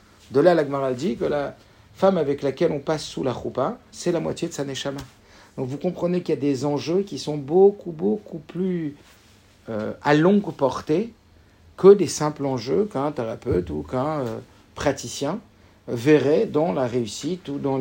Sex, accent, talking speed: male, French, 175 wpm